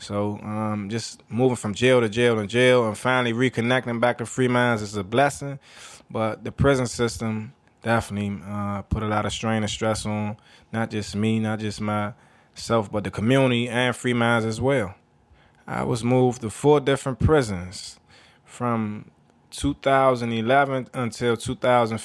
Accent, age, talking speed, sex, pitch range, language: American, 20-39, 165 wpm, male, 110-125 Hz, English